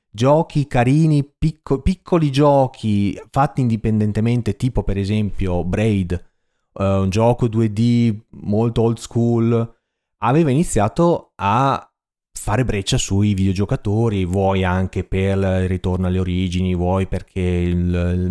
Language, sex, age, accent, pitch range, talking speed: Italian, male, 30-49, native, 100-130 Hz, 115 wpm